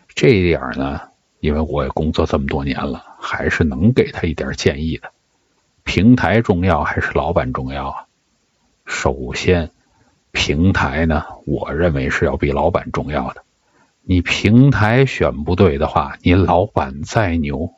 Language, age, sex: Chinese, 50-69, male